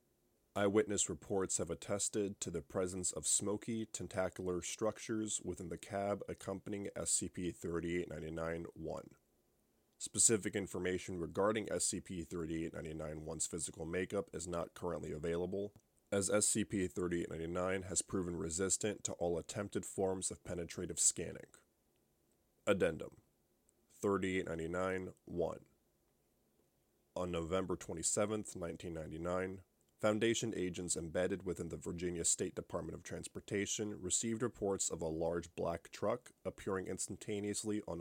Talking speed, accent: 100 wpm, American